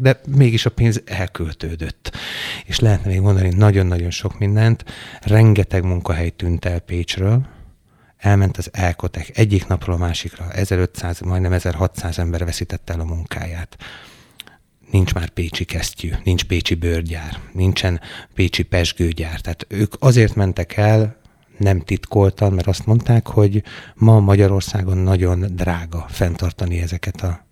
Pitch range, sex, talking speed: 85-100 Hz, male, 130 wpm